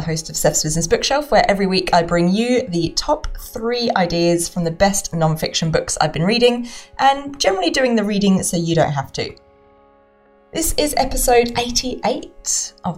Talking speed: 175 wpm